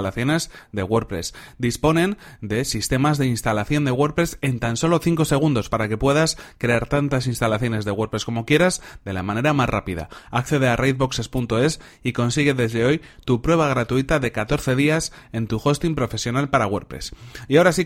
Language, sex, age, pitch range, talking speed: Spanish, male, 30-49, 115-145 Hz, 170 wpm